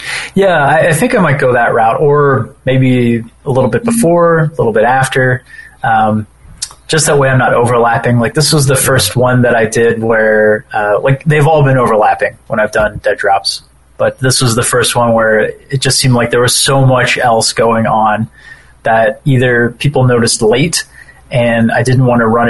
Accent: American